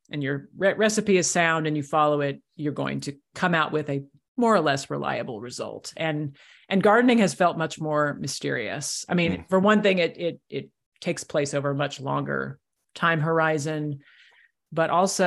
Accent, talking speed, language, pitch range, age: American, 190 wpm, English, 150-180 Hz, 40-59